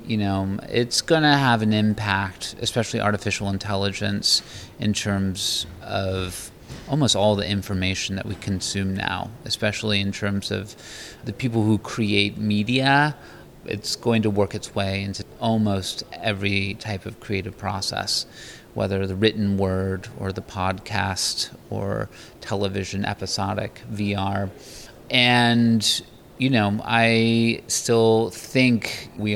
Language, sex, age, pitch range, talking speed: English, male, 30-49, 100-115 Hz, 125 wpm